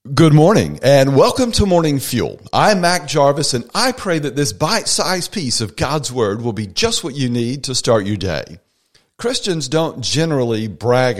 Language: English